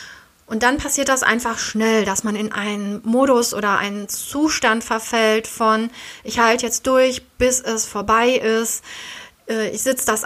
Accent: German